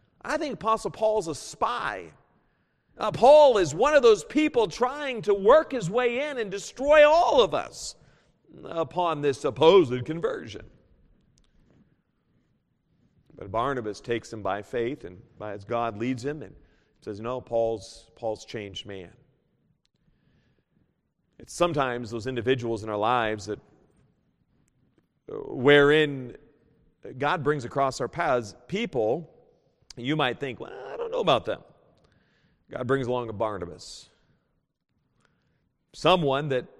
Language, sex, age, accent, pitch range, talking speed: English, male, 40-59, American, 115-165 Hz, 130 wpm